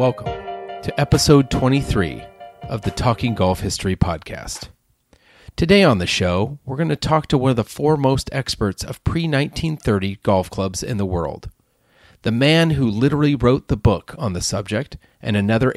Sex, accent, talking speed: male, American, 170 wpm